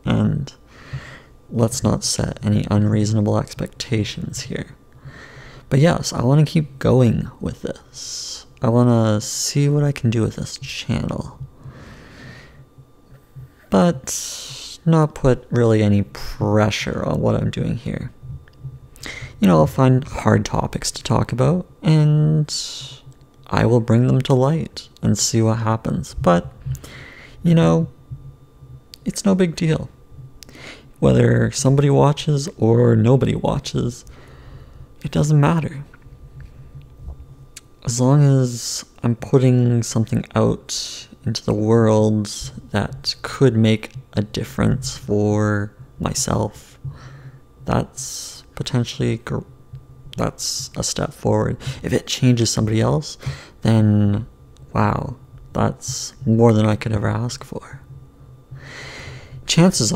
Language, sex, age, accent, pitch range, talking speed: English, male, 30-49, American, 110-135 Hz, 115 wpm